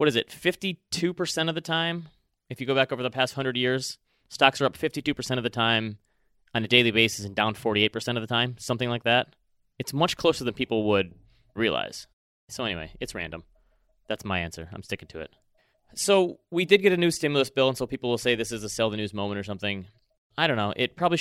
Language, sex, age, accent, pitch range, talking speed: English, male, 30-49, American, 110-135 Hz, 230 wpm